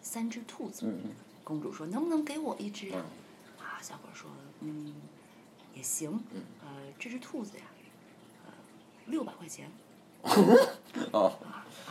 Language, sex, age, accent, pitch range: Chinese, female, 30-49, native, 175-290 Hz